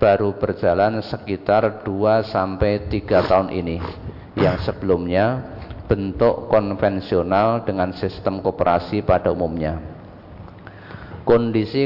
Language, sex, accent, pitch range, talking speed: Indonesian, male, native, 95-110 Hz, 90 wpm